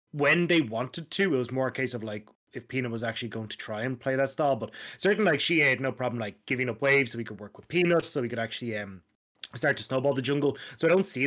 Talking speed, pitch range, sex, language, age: 280 wpm, 115-145 Hz, male, English, 20-39